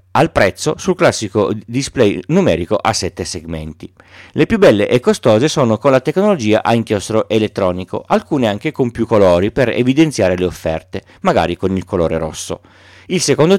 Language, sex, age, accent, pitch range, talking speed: Italian, male, 40-59, native, 95-120 Hz, 165 wpm